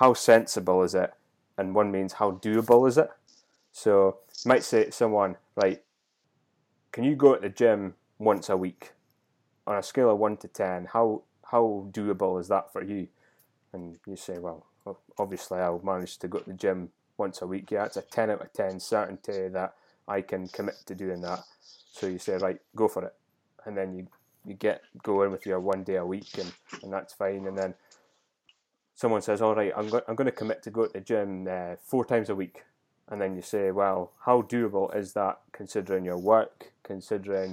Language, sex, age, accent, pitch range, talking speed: English, male, 20-39, British, 95-115 Hz, 205 wpm